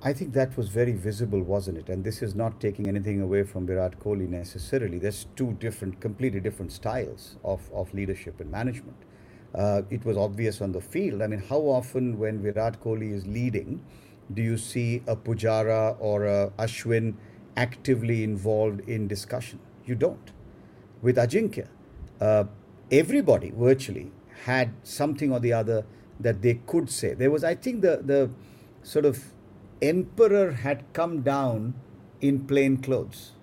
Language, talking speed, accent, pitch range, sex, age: English, 160 wpm, Indian, 105-130 Hz, male, 50-69